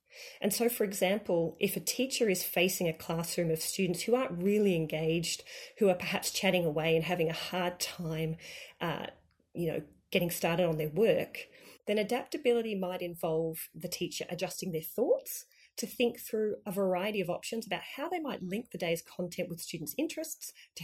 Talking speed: 180 wpm